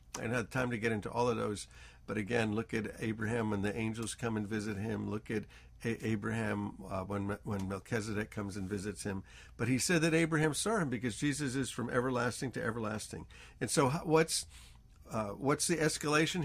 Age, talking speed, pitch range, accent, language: 50-69, 195 wpm, 100-140 Hz, American, English